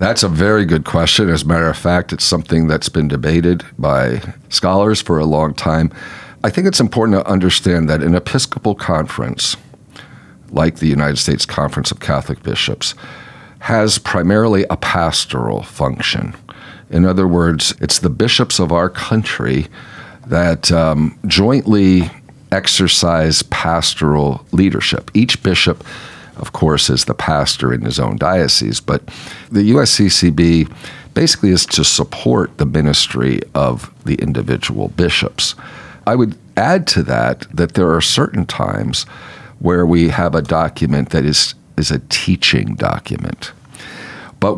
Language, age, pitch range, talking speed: English, 50-69, 80-100 Hz, 140 wpm